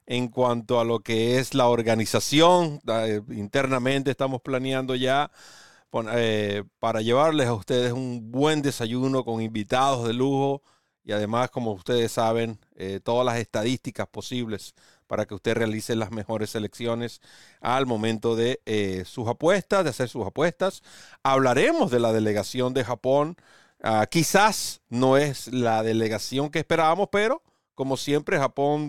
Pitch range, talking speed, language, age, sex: 115-150 Hz, 135 wpm, Spanish, 40-59, male